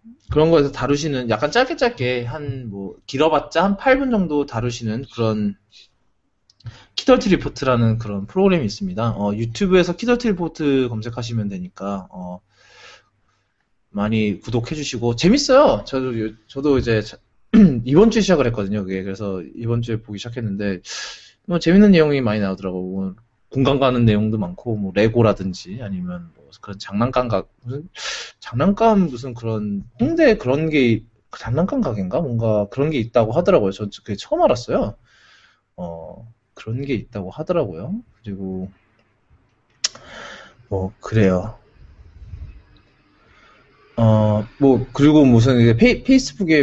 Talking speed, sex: 110 wpm, male